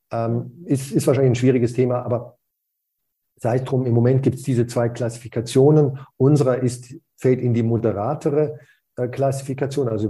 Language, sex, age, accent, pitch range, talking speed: German, male, 50-69, German, 120-140 Hz, 165 wpm